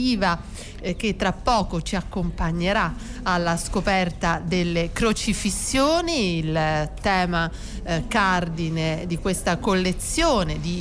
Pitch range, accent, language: 170-200 Hz, native, Italian